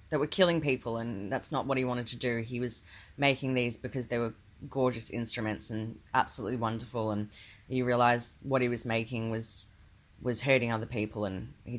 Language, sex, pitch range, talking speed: English, female, 115-150 Hz, 195 wpm